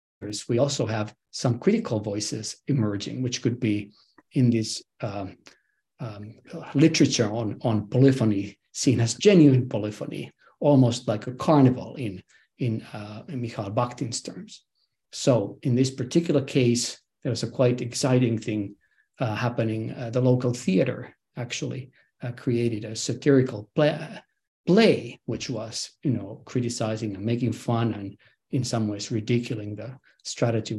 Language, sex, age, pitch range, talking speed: English, male, 50-69, 110-135 Hz, 140 wpm